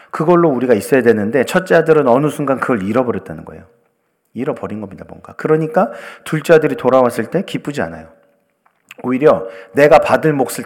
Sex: male